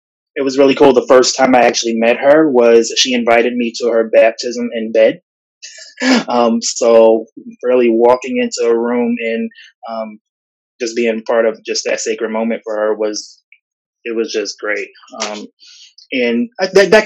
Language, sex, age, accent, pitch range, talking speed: English, male, 20-39, American, 115-185 Hz, 170 wpm